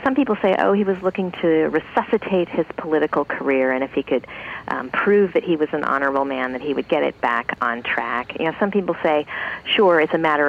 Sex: female